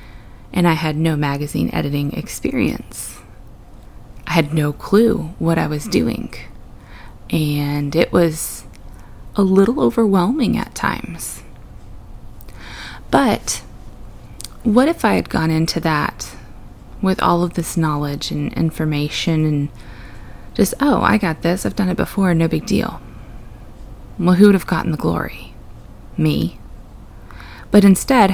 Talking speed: 130 wpm